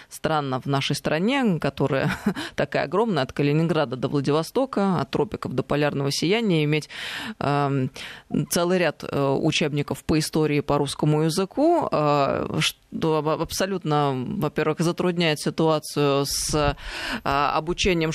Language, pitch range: Russian, 140-170 Hz